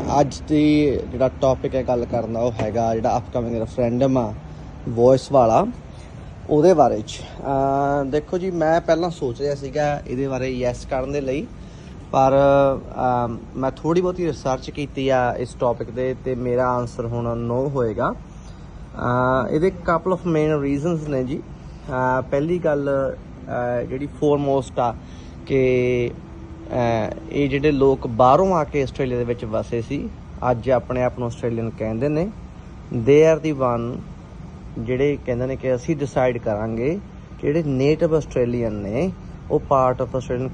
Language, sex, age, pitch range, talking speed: Punjabi, male, 20-39, 120-145 Hz, 140 wpm